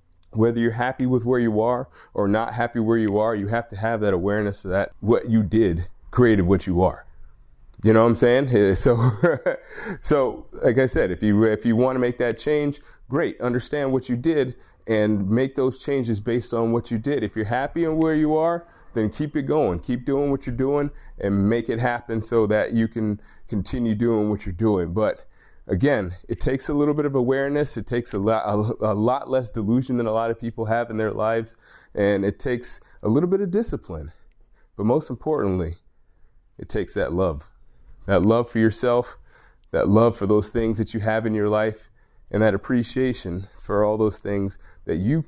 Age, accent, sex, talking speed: 30-49, American, male, 205 wpm